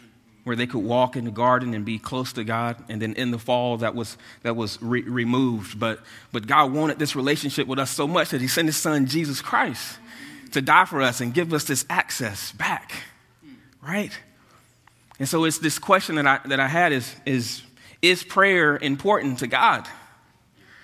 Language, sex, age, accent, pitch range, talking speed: English, male, 30-49, American, 115-150 Hz, 195 wpm